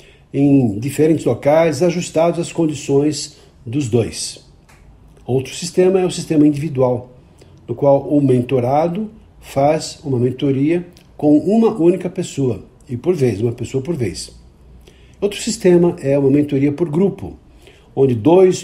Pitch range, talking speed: 135-170 Hz, 130 wpm